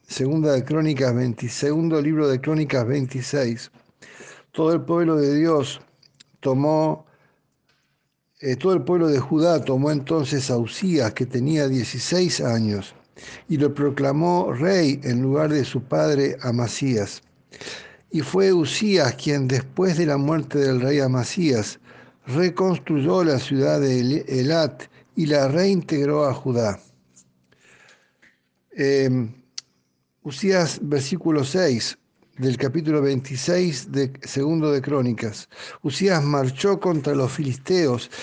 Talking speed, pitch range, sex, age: 120 wpm, 130-165 Hz, male, 60-79